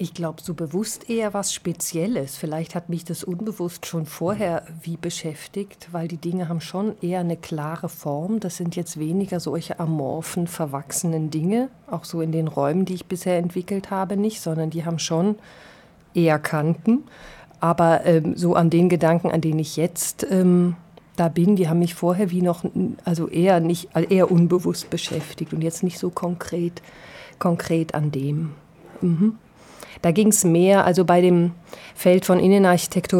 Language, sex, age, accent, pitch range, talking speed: German, female, 50-69, German, 165-185 Hz, 170 wpm